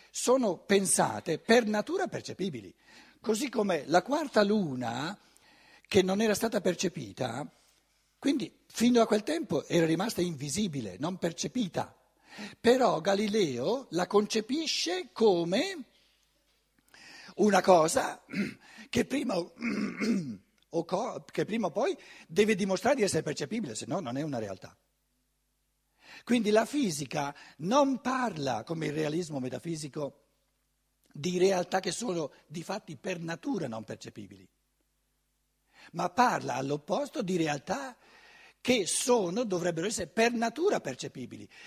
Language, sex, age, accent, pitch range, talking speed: Italian, male, 60-79, native, 170-240 Hz, 115 wpm